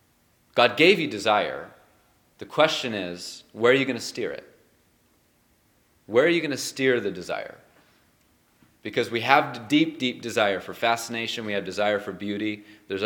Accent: American